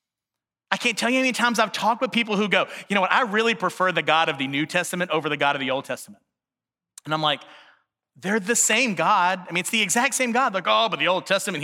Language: English